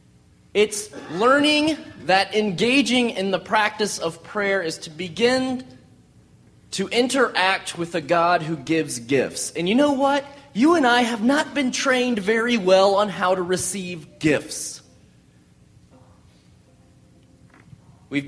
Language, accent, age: English, American, 30-49